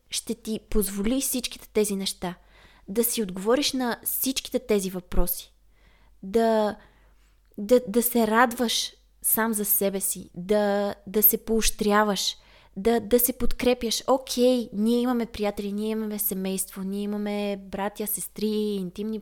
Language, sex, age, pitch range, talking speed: Bulgarian, female, 20-39, 200-245 Hz, 135 wpm